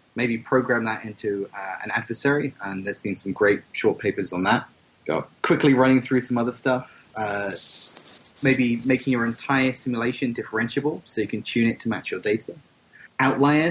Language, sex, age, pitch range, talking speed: English, male, 30-49, 105-130 Hz, 175 wpm